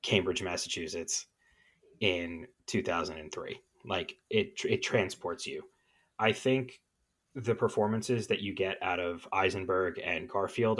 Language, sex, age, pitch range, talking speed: English, male, 30-49, 90-120 Hz, 115 wpm